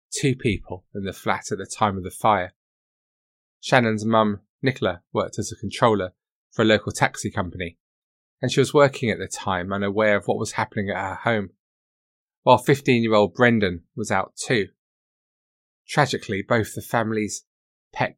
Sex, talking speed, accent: male, 160 wpm, British